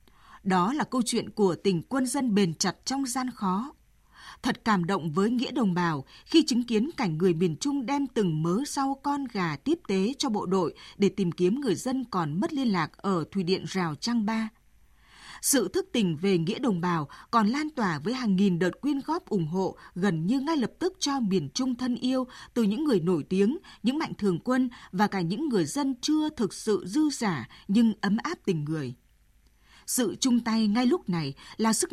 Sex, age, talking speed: female, 20-39, 210 wpm